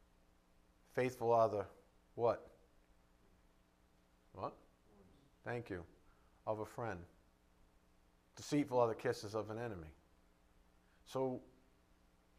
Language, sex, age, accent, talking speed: English, male, 40-59, American, 85 wpm